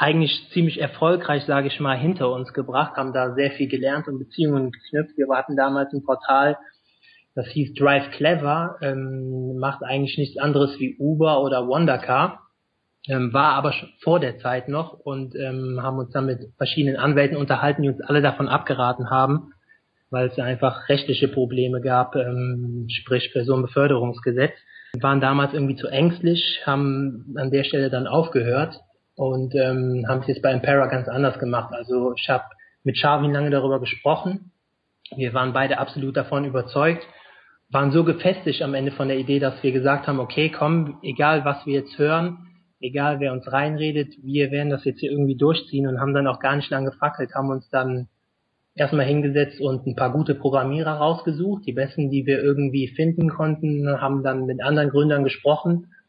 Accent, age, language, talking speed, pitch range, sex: German, 20-39, German, 175 wpm, 130-145 Hz, male